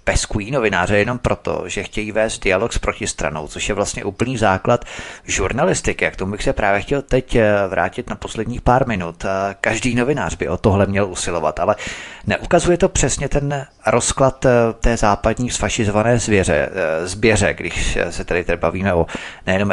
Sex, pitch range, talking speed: male, 95-115 Hz, 160 wpm